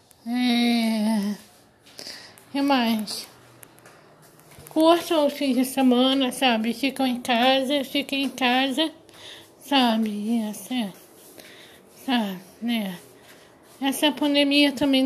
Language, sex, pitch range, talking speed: Portuguese, female, 240-295 Hz, 90 wpm